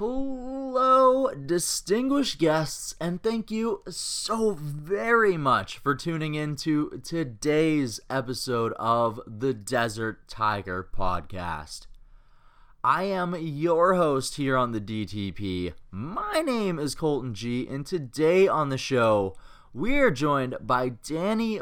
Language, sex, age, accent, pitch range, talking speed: English, male, 20-39, American, 125-180 Hz, 120 wpm